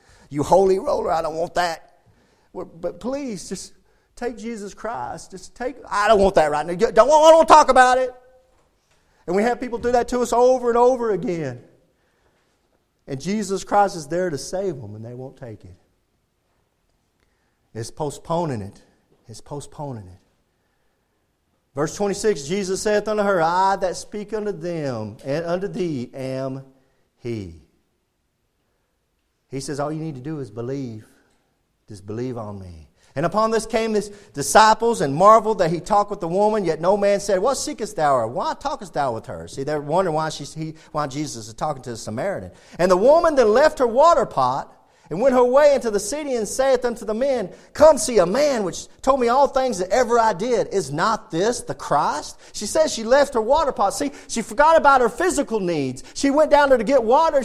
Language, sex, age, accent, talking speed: English, male, 40-59, American, 195 wpm